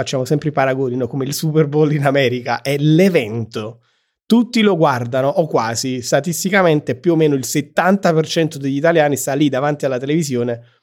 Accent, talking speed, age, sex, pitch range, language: native, 165 wpm, 30-49, male, 135-190 Hz, Italian